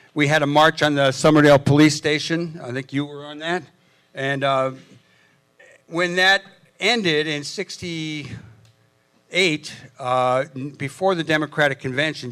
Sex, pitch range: male, 130-155 Hz